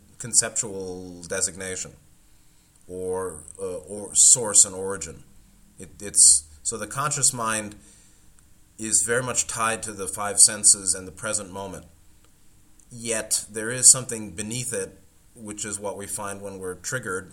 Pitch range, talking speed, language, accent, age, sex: 95-110 Hz, 140 wpm, English, American, 30-49, male